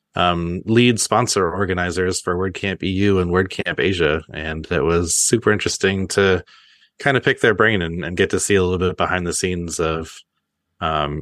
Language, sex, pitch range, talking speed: English, male, 85-95 Hz, 180 wpm